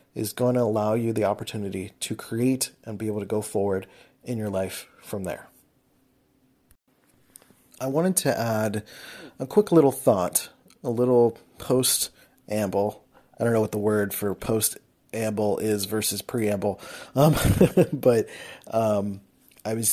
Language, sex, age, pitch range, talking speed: English, male, 30-49, 105-130 Hz, 140 wpm